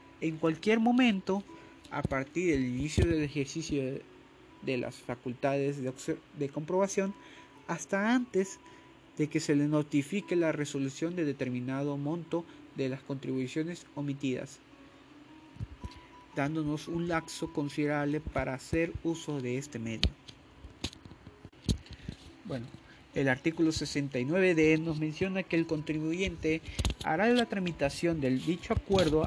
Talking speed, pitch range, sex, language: 115 wpm, 145-185 Hz, male, Spanish